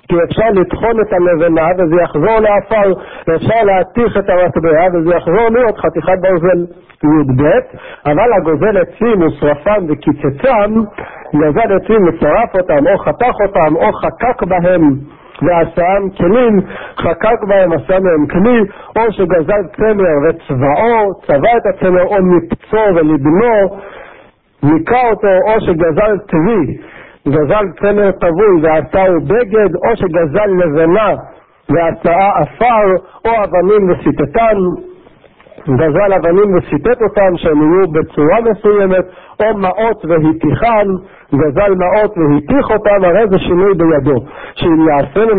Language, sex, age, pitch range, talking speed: Hebrew, male, 60-79, 165-210 Hz, 120 wpm